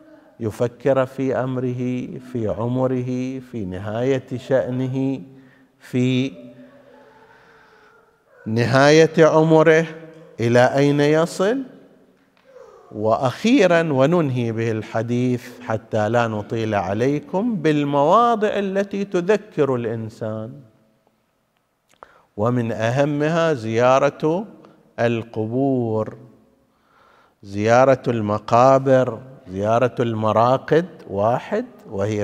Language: Arabic